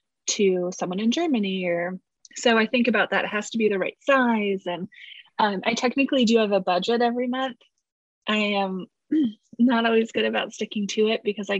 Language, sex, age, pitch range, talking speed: English, female, 20-39, 195-245 Hz, 195 wpm